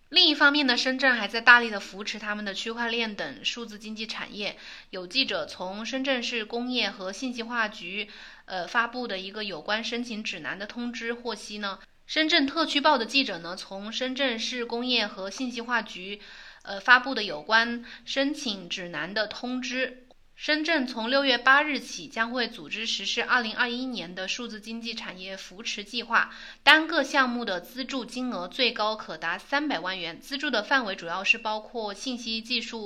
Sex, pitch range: female, 215-255 Hz